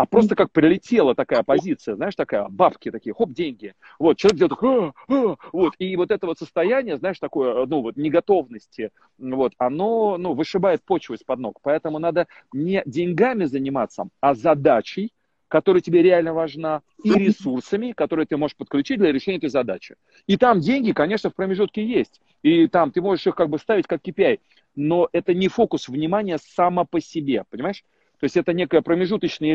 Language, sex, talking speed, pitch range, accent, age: Russian, male, 180 wpm, 160-220 Hz, native, 40-59